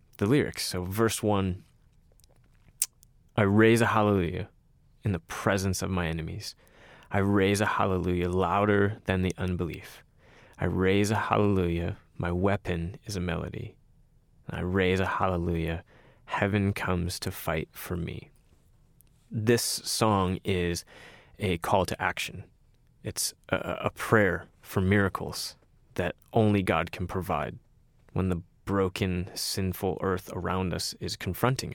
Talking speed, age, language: 130 wpm, 20-39, English